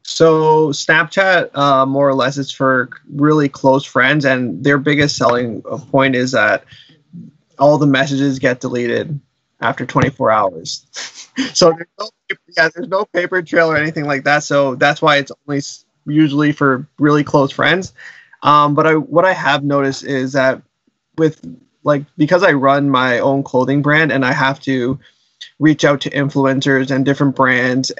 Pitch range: 135-150 Hz